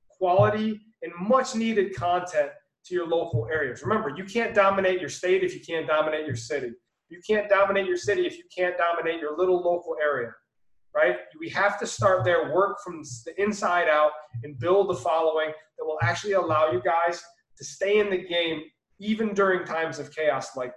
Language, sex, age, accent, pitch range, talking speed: English, male, 30-49, American, 155-180 Hz, 190 wpm